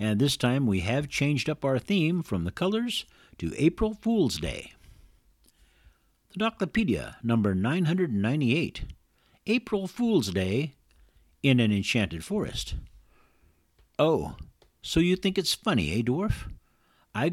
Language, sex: English, male